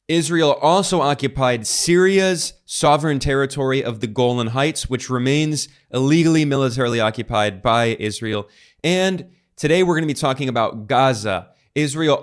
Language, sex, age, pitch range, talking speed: English, male, 20-39, 120-155 Hz, 130 wpm